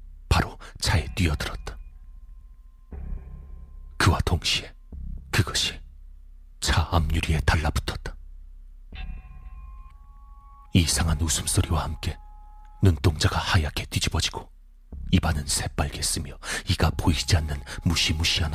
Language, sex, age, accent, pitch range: Korean, male, 40-59, native, 65-85 Hz